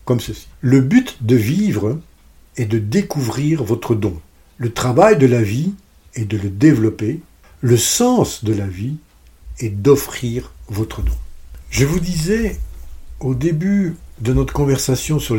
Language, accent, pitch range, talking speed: French, French, 110-155 Hz, 150 wpm